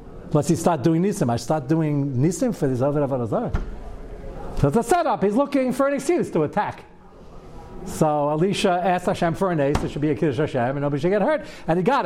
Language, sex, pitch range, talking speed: English, male, 160-215 Hz, 220 wpm